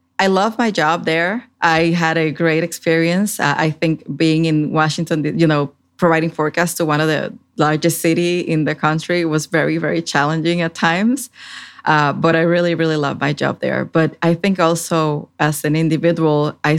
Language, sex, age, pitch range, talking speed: English, female, 20-39, 150-180 Hz, 185 wpm